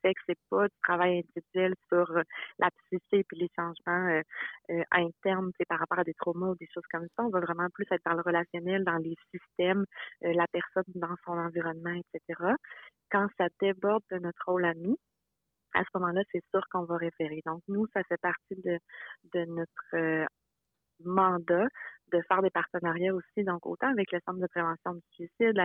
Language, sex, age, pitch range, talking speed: French, female, 30-49, 170-195 Hz, 195 wpm